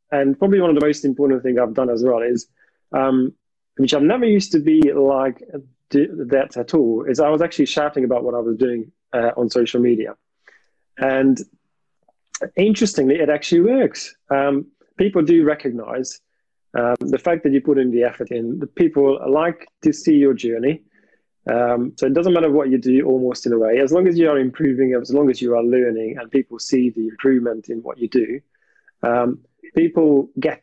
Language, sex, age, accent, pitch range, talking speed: English, male, 30-49, British, 125-150 Hz, 195 wpm